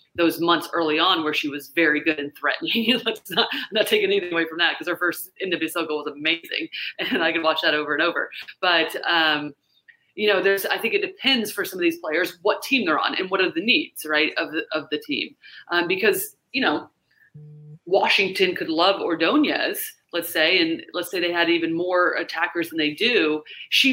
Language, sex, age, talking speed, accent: English, female, 30-49, 215 wpm, American